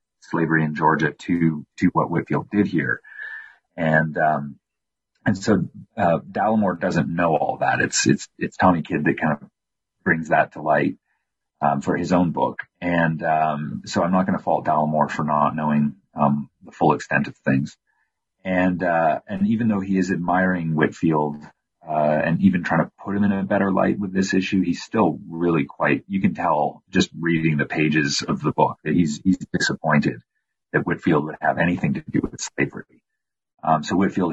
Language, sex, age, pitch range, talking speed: English, male, 40-59, 75-90 Hz, 185 wpm